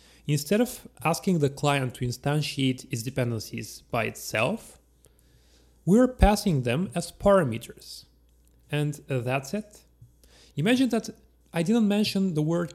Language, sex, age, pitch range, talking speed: English, male, 30-49, 130-185 Hz, 120 wpm